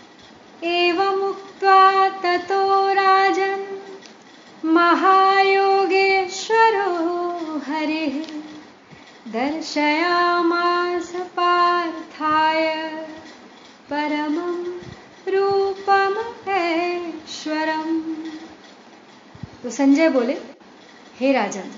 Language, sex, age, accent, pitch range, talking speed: Hindi, female, 30-49, native, 245-335 Hz, 45 wpm